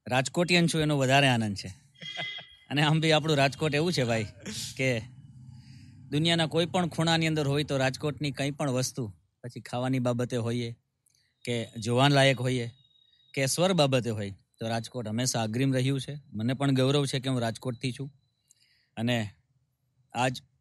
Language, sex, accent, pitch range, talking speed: Gujarati, male, native, 120-150 Hz, 120 wpm